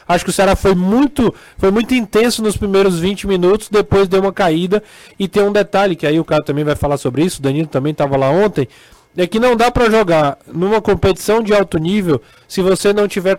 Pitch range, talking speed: 175-215 Hz, 230 wpm